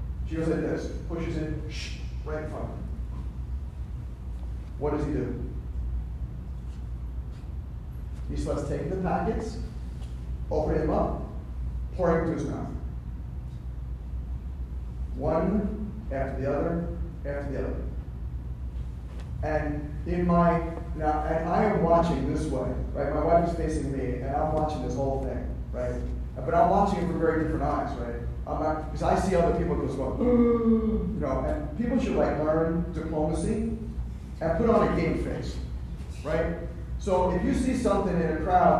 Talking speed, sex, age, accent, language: 150 wpm, male, 40-59, American, English